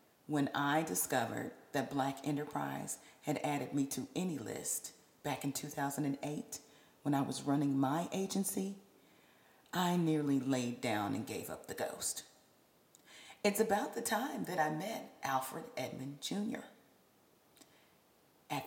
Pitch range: 140-195 Hz